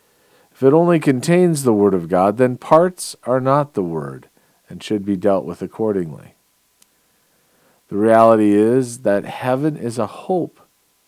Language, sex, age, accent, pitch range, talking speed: English, male, 50-69, American, 100-130 Hz, 150 wpm